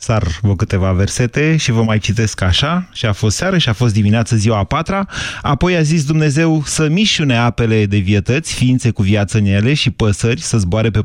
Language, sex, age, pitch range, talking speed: Romanian, male, 30-49, 110-150 Hz, 215 wpm